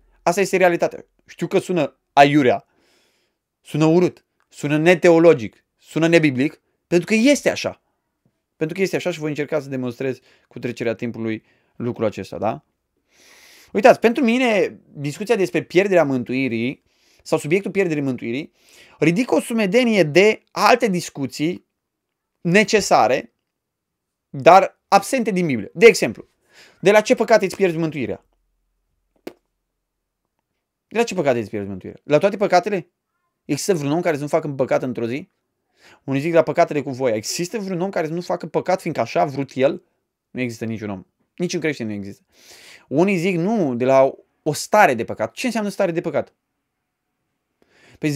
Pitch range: 135-190 Hz